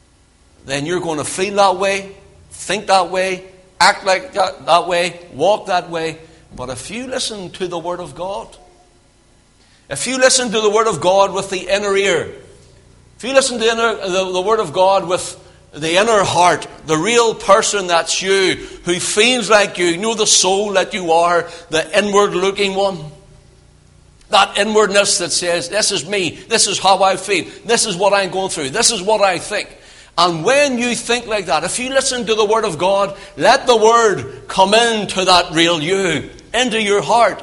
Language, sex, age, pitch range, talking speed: English, male, 60-79, 160-215 Hz, 195 wpm